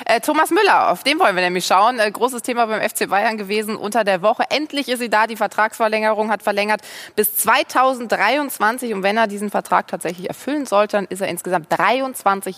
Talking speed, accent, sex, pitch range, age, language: 190 wpm, German, female, 195-245 Hz, 20-39, German